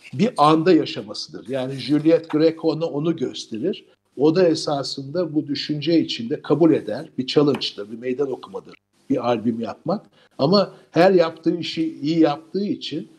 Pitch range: 130-155 Hz